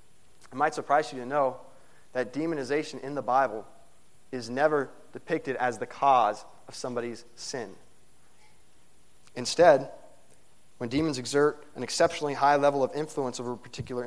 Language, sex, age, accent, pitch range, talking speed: English, male, 30-49, American, 125-150 Hz, 140 wpm